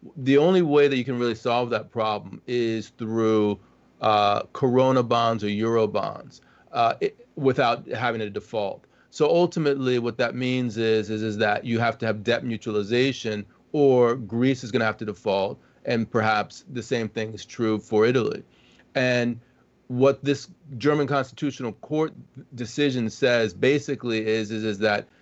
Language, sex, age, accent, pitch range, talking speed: English, male, 40-59, American, 110-135 Hz, 165 wpm